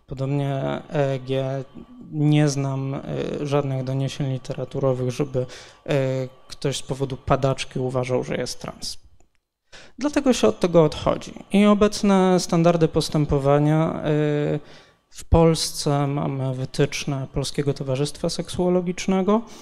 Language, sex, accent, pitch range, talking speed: Polish, male, native, 135-155 Hz, 100 wpm